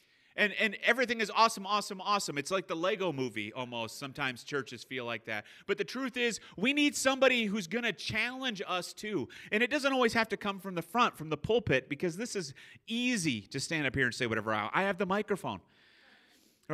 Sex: male